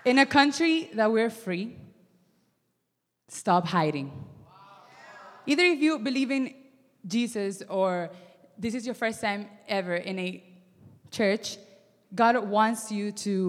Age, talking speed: 20-39, 125 wpm